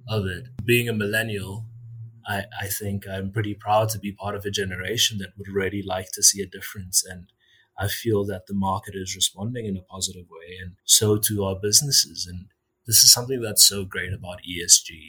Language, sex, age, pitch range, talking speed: English, male, 30-49, 95-110 Hz, 205 wpm